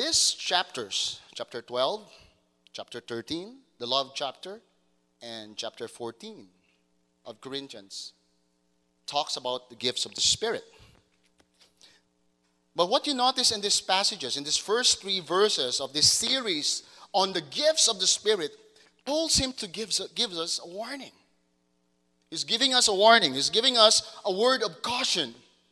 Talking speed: 145 wpm